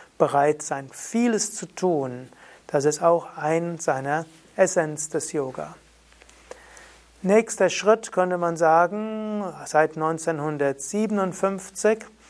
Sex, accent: male, German